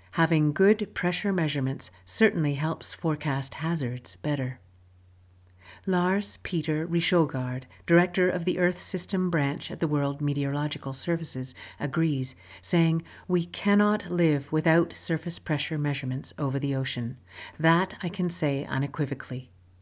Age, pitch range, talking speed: 50-69, 130-165 Hz, 120 wpm